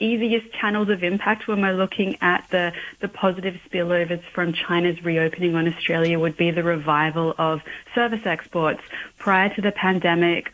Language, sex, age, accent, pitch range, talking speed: English, female, 30-49, Australian, 165-195 Hz, 160 wpm